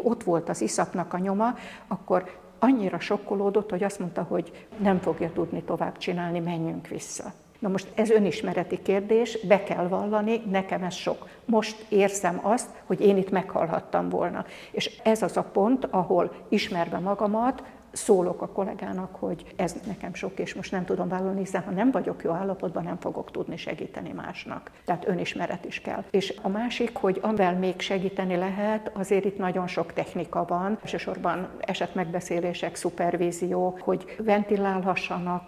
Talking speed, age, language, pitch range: 160 wpm, 60-79, Hungarian, 175-200 Hz